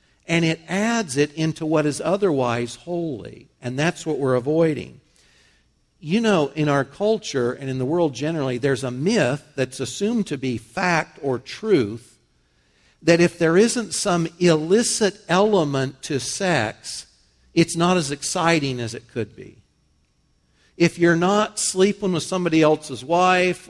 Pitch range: 135-185 Hz